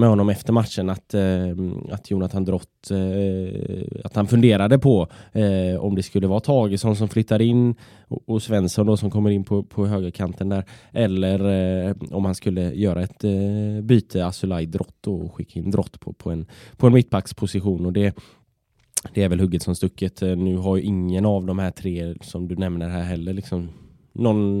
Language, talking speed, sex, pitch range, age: Swedish, 195 wpm, male, 95-110 Hz, 10-29